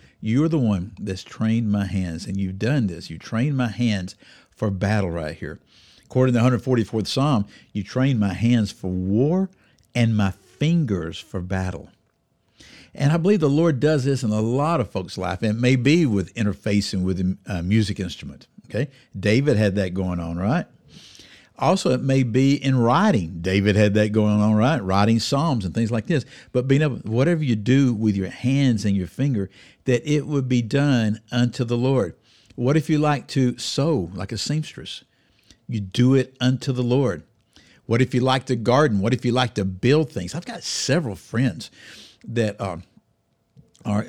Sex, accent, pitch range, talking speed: male, American, 100-135 Hz, 185 wpm